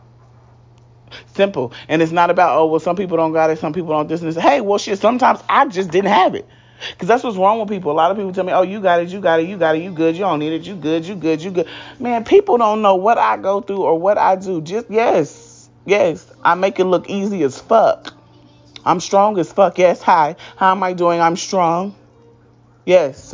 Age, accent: 30-49, American